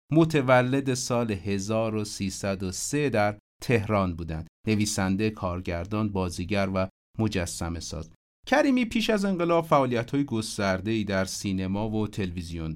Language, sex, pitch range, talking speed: Persian, male, 95-135 Hz, 100 wpm